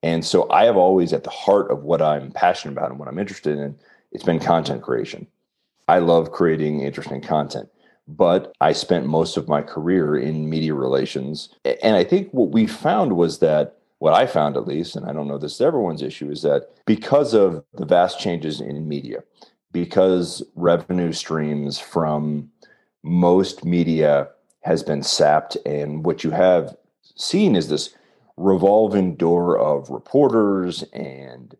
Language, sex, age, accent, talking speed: English, male, 40-59, American, 165 wpm